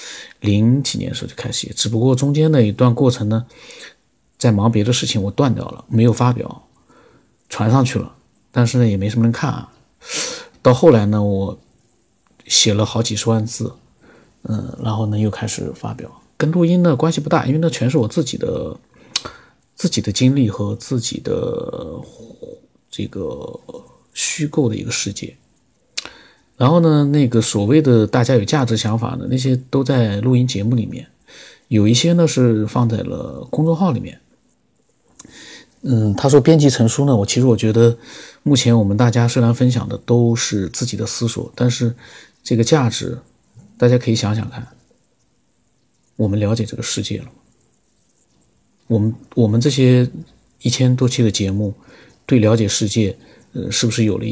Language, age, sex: Chinese, 50-69, male